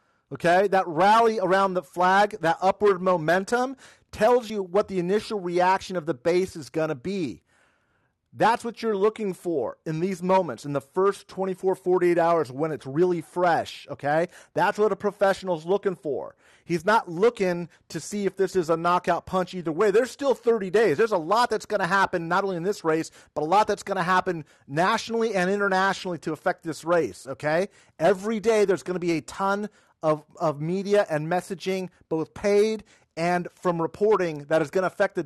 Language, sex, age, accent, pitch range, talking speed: English, male, 40-59, American, 160-200 Hz, 195 wpm